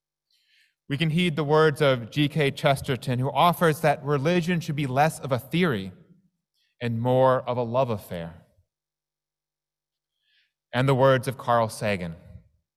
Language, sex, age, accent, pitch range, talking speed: English, male, 30-49, American, 115-160 Hz, 140 wpm